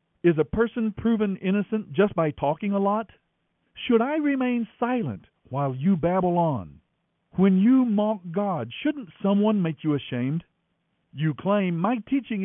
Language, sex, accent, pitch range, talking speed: English, male, American, 145-220 Hz, 150 wpm